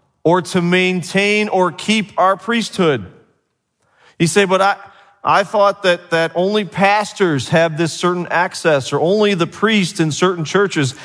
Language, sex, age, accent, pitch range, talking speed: English, male, 40-59, American, 140-195 Hz, 150 wpm